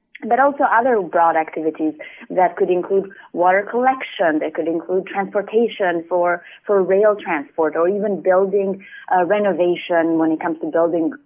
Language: English